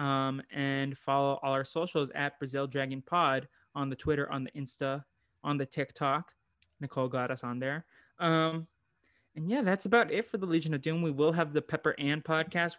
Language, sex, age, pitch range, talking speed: English, male, 20-39, 130-175 Hz, 195 wpm